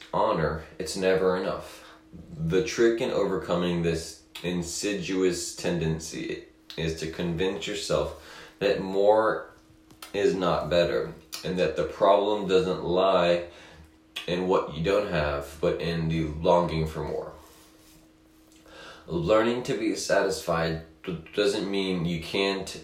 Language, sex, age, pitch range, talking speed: English, male, 20-39, 80-100 Hz, 120 wpm